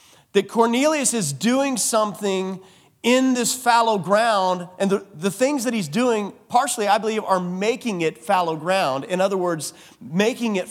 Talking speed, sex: 160 wpm, male